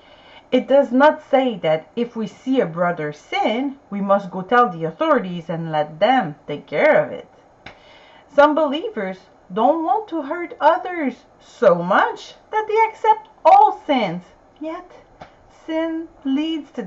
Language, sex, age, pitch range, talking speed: English, female, 40-59, 180-295 Hz, 150 wpm